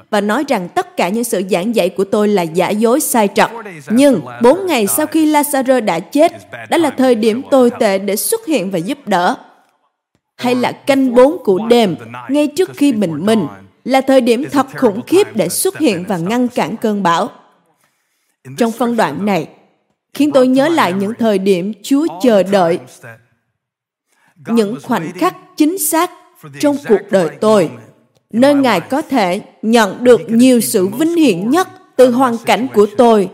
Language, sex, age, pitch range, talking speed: Vietnamese, female, 20-39, 200-280 Hz, 180 wpm